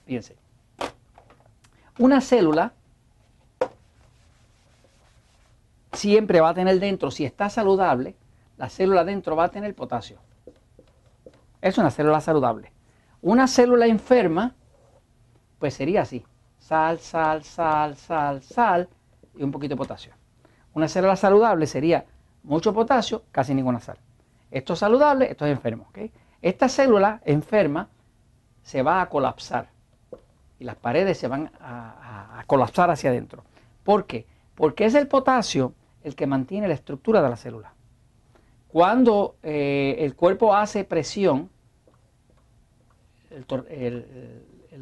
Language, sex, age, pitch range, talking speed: Spanish, male, 50-69, 120-195 Hz, 125 wpm